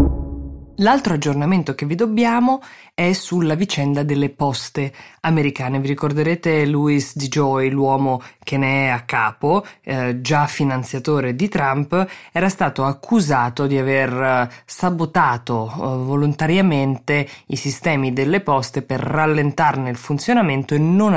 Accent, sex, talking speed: native, female, 130 wpm